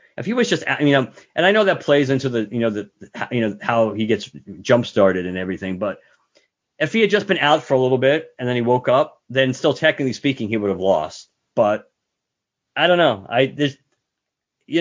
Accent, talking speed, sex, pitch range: American, 220 wpm, male, 105-130 Hz